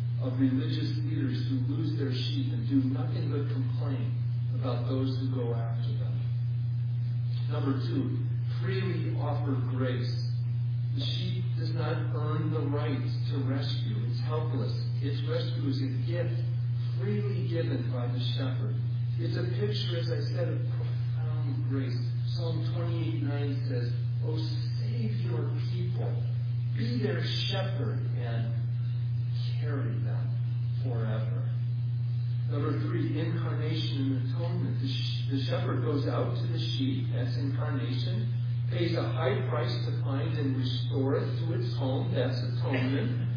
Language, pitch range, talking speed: English, 120-125 Hz, 135 wpm